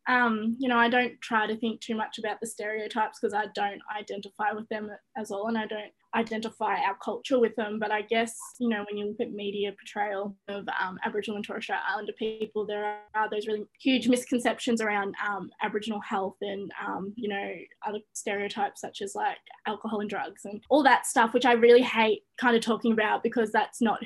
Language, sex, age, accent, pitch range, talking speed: English, female, 10-29, Australian, 205-230 Hz, 210 wpm